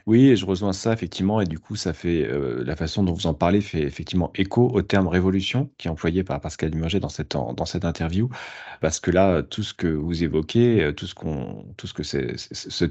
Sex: male